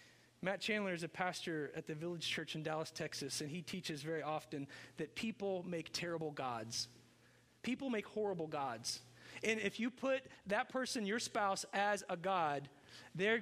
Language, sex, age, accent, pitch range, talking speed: English, male, 40-59, American, 160-220 Hz, 170 wpm